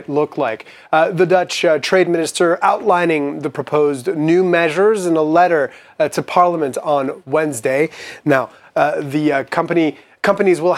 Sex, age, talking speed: male, 30-49, 155 wpm